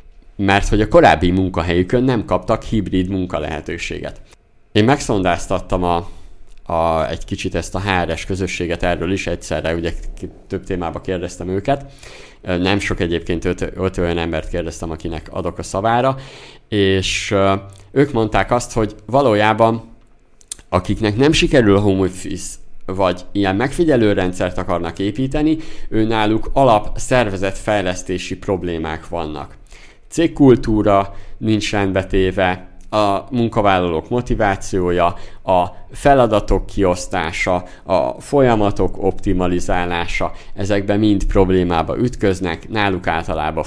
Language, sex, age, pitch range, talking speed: Hungarian, male, 50-69, 90-105 Hz, 115 wpm